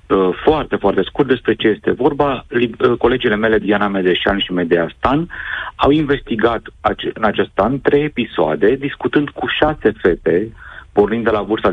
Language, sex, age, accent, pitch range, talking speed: Romanian, male, 40-59, native, 95-120 Hz, 145 wpm